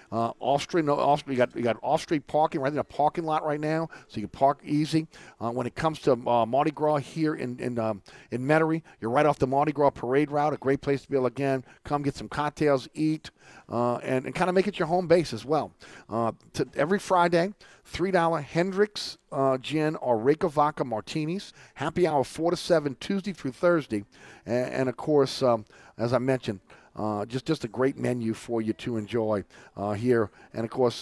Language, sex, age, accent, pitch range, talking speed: English, male, 40-59, American, 115-155 Hz, 215 wpm